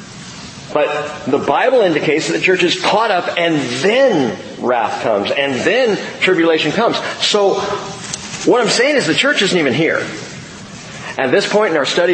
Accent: American